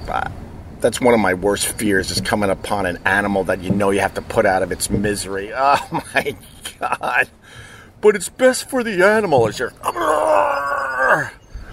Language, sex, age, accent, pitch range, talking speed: English, male, 50-69, American, 100-120 Hz, 175 wpm